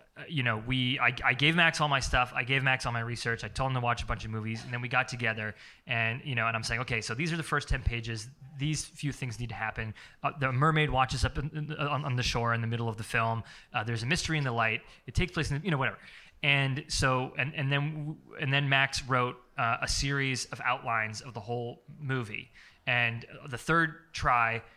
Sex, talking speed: male, 255 wpm